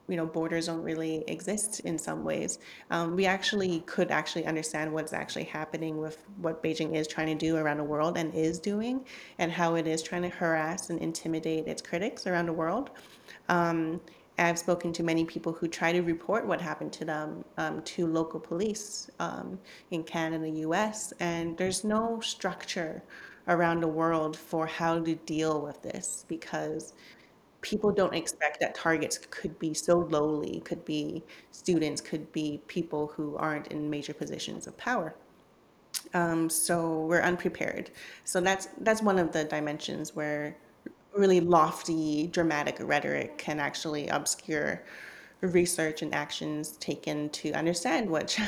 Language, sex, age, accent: English, female, 30-49, American